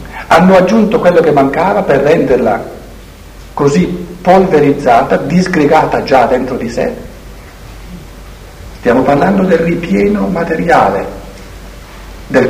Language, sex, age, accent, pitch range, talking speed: Italian, male, 60-79, native, 125-190 Hz, 95 wpm